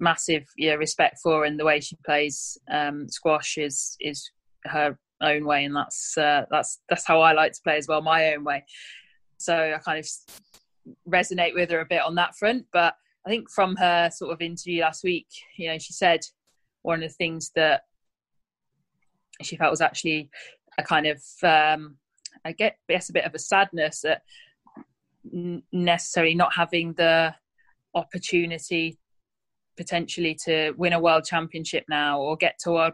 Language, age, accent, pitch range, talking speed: English, 20-39, British, 155-175 Hz, 175 wpm